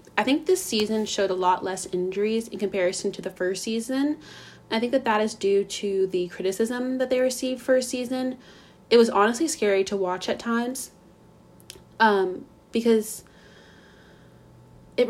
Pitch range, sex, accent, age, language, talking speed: 190-230 Hz, female, American, 20-39, English, 160 wpm